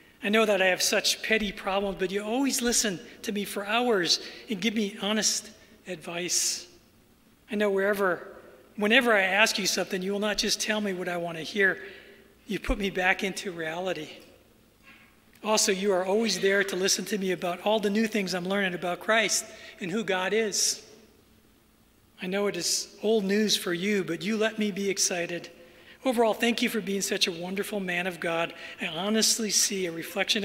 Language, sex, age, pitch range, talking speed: English, male, 40-59, 175-210 Hz, 195 wpm